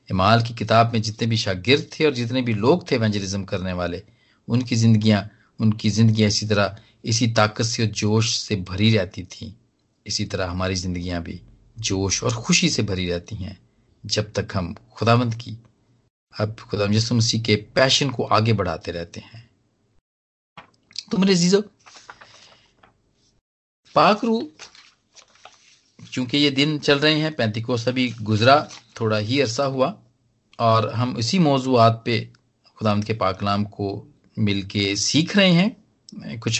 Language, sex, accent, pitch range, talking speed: Hindi, male, native, 105-130 Hz, 145 wpm